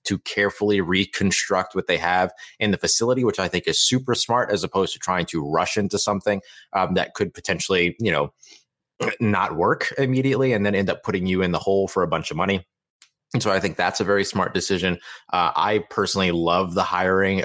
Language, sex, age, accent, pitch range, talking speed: English, male, 30-49, American, 90-110 Hz, 210 wpm